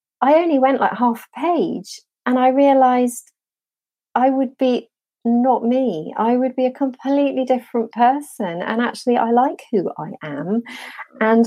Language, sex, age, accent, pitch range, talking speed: English, female, 40-59, British, 200-255 Hz, 155 wpm